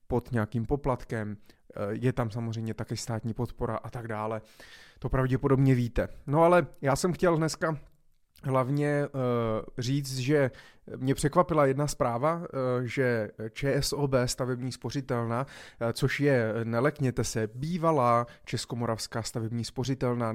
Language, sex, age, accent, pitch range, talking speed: Czech, male, 30-49, native, 115-145 Hz, 120 wpm